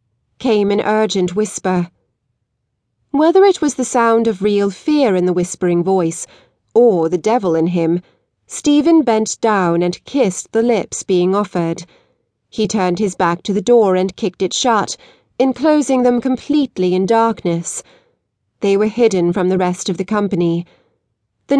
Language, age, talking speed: English, 30-49, 155 wpm